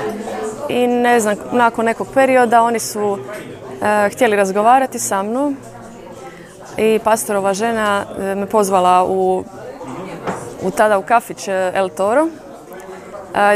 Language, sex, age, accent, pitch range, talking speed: Polish, female, 20-39, Croatian, 190-230 Hz, 120 wpm